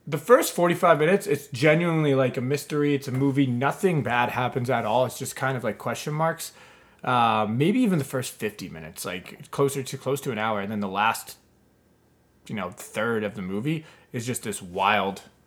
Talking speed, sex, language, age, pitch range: 200 wpm, male, English, 20-39, 110-145 Hz